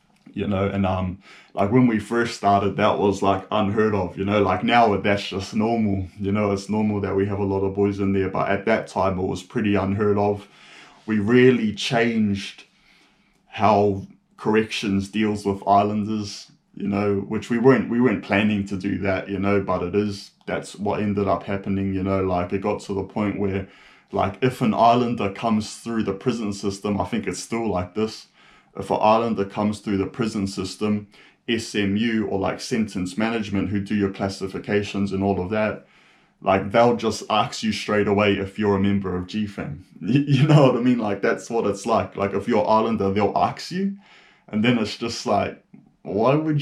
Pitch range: 100-110 Hz